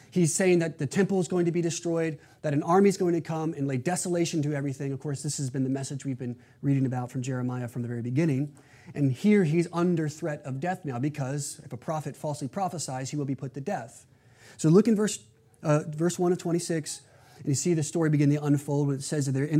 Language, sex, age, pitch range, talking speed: English, male, 30-49, 130-165 Hz, 245 wpm